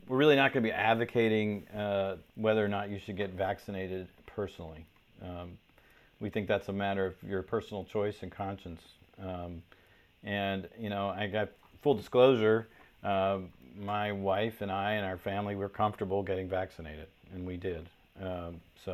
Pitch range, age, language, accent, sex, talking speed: 90-110 Hz, 40-59, English, American, male, 170 wpm